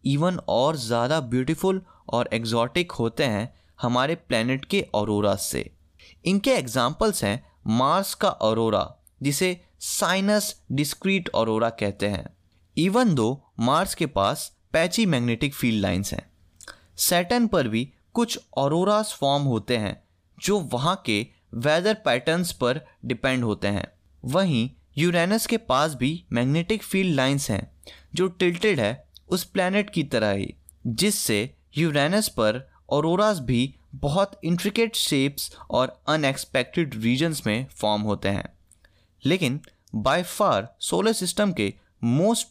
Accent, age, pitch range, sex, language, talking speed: native, 20-39, 110-180 Hz, male, Hindi, 130 wpm